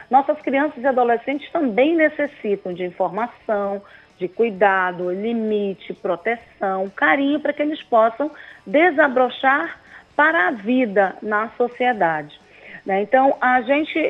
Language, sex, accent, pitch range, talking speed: Portuguese, female, Brazilian, 215-270 Hz, 115 wpm